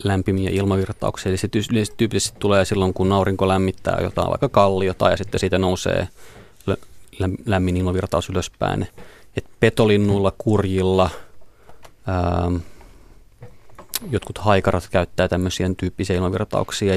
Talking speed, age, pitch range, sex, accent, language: 105 wpm, 30-49, 95-105 Hz, male, native, Finnish